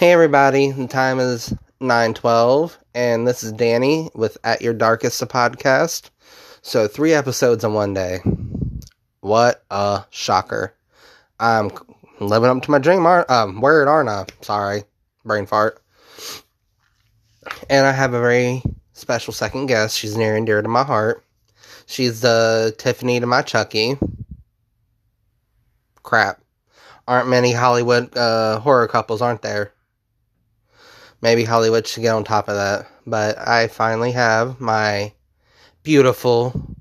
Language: English